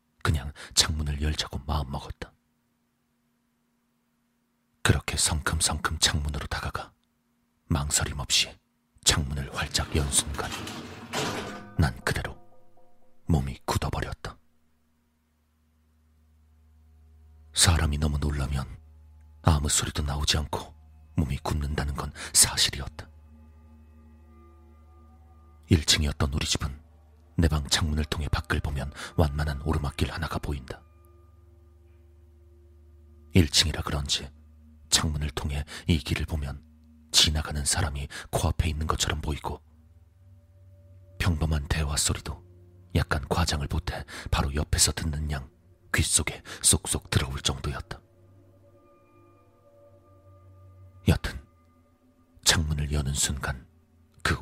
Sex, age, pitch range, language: male, 40-59, 75-85 Hz, Korean